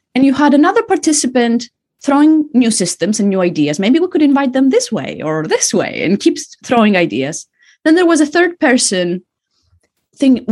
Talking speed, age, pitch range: 185 wpm, 20-39, 175-260 Hz